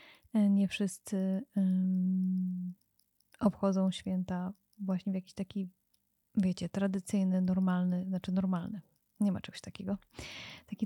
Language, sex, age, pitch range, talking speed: Polish, female, 20-39, 180-205 Hz, 100 wpm